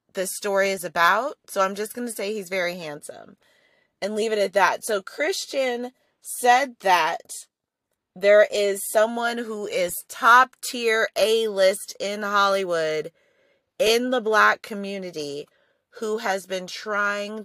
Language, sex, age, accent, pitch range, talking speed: English, female, 30-49, American, 185-245 Hz, 140 wpm